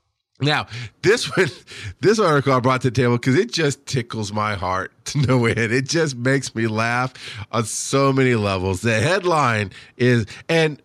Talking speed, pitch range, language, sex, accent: 175 wpm, 125-175 Hz, English, male, American